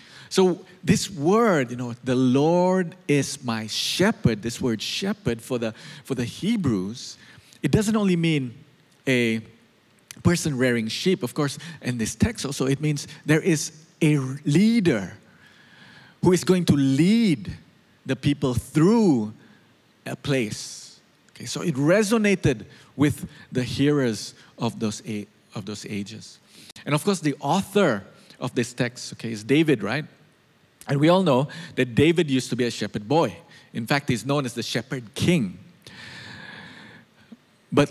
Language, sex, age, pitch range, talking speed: English, male, 50-69, 125-175 Hz, 145 wpm